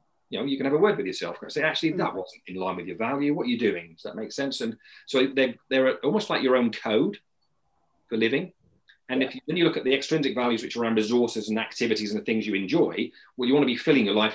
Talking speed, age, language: 275 wpm, 40-59, English